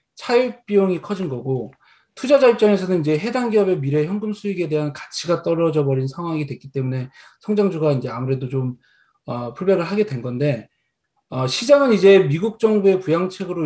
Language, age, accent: Korean, 20-39, native